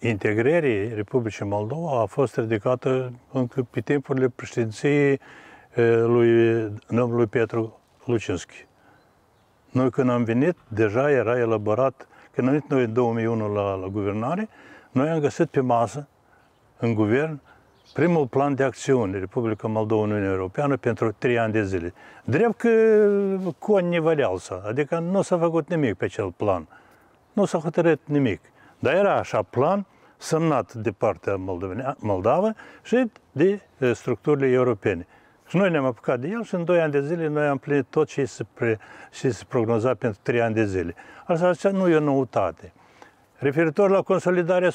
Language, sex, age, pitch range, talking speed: Romanian, male, 60-79, 115-165 Hz, 155 wpm